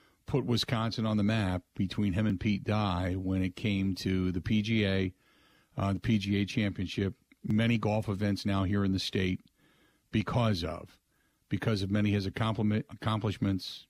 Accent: American